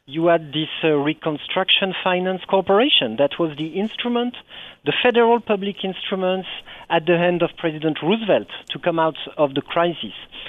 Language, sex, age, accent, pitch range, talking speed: English, male, 50-69, French, 165-210 Hz, 155 wpm